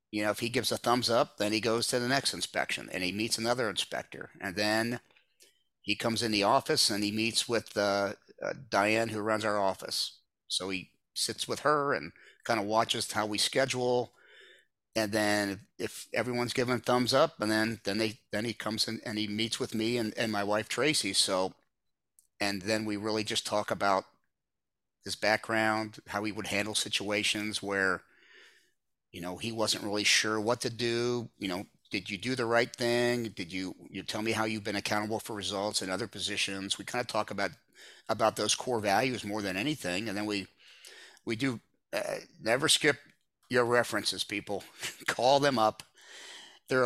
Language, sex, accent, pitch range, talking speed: English, male, American, 105-120 Hz, 195 wpm